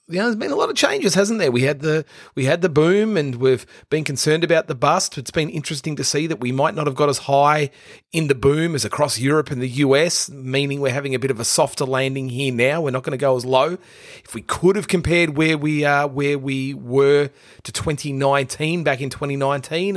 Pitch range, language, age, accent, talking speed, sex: 130-165 Hz, English, 30-49, Australian, 240 wpm, male